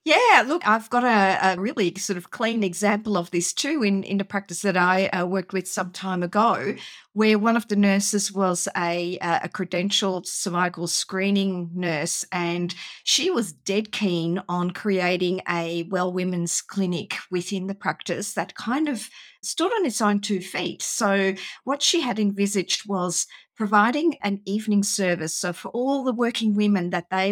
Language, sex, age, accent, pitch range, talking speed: English, female, 50-69, Australian, 180-215 Hz, 175 wpm